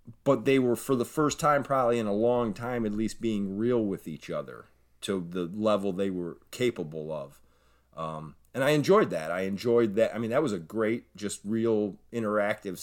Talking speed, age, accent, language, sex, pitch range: 200 wpm, 30-49, American, English, male, 95-125 Hz